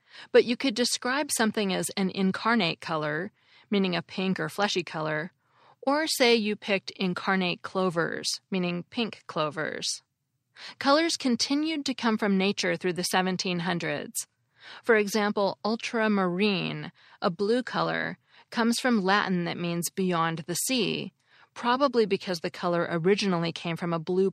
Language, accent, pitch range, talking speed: English, American, 175-220 Hz, 140 wpm